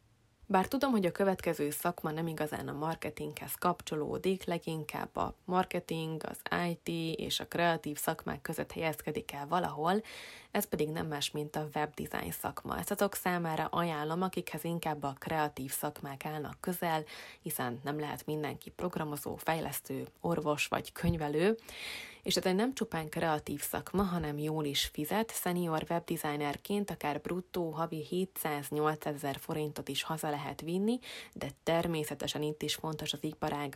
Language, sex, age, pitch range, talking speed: Hungarian, female, 20-39, 150-175 Hz, 145 wpm